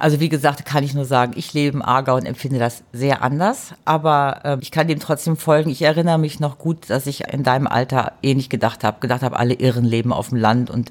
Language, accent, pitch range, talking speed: German, German, 130-155 Hz, 255 wpm